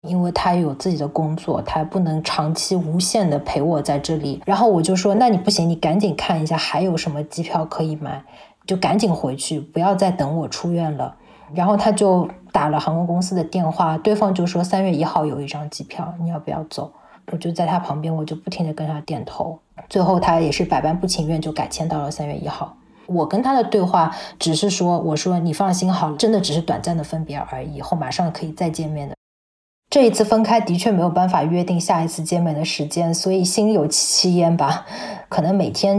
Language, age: Chinese, 20-39